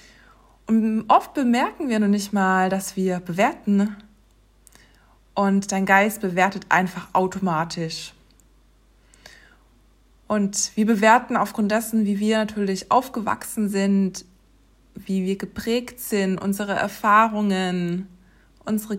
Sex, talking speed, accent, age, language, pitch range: female, 100 wpm, German, 20-39, German, 185-225 Hz